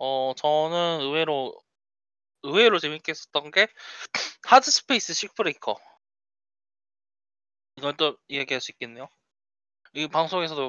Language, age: Korean, 20-39